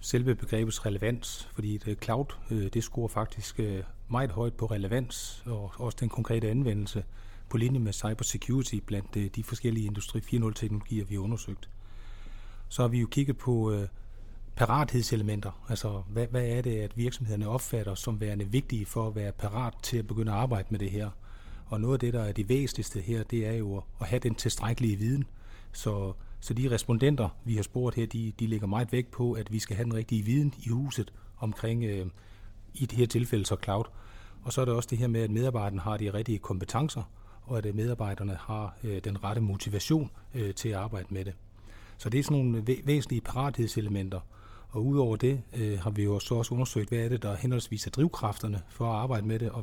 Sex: male